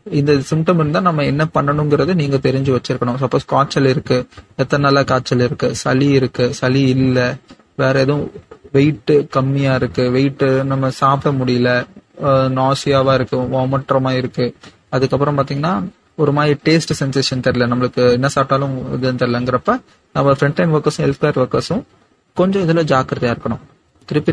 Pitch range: 130-145 Hz